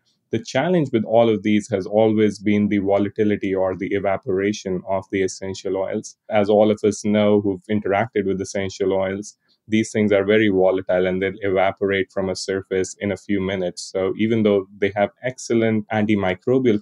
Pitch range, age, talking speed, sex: 95-105 Hz, 20-39, 180 wpm, male